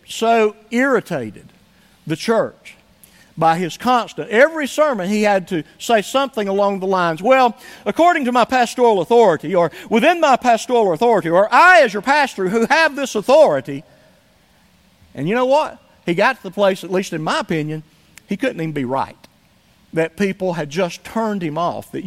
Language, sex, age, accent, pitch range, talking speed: English, male, 50-69, American, 160-235 Hz, 175 wpm